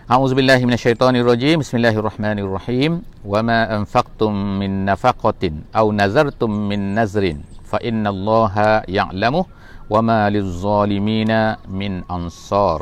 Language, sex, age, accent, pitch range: English, male, 50-69, Indonesian, 100-120 Hz